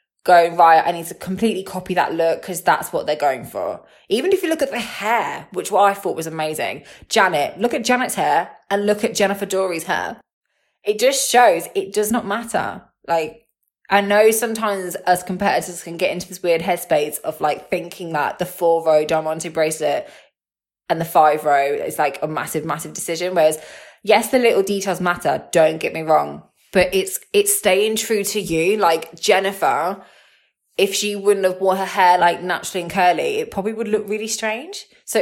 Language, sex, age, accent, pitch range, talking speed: English, female, 20-39, British, 170-220 Hz, 195 wpm